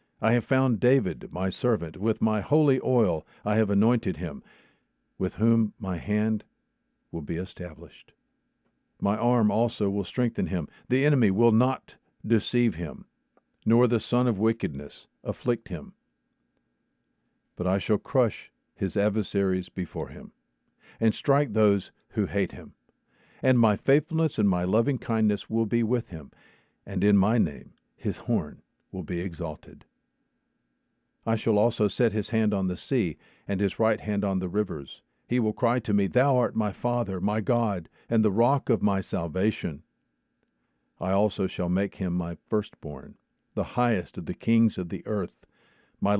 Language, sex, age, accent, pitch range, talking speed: English, male, 50-69, American, 95-120 Hz, 160 wpm